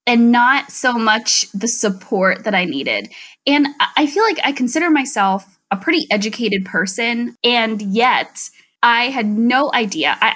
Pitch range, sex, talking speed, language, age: 195-245 Hz, female, 155 wpm, English, 20-39